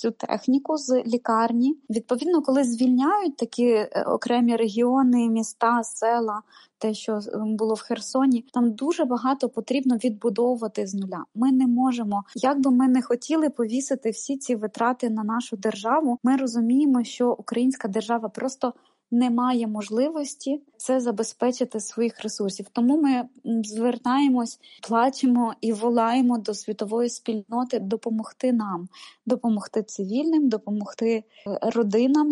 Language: Ukrainian